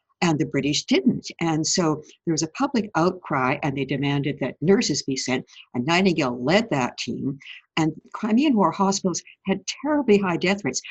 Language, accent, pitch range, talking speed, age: English, American, 140-200 Hz, 175 wpm, 60-79